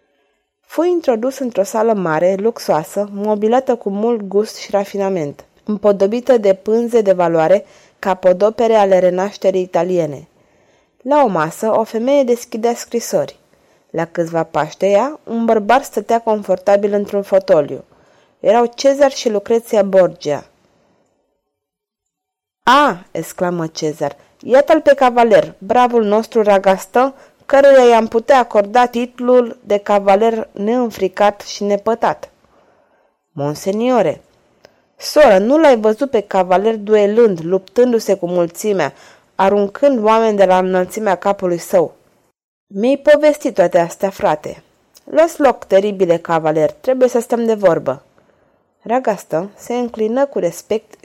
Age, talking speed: 30-49, 120 wpm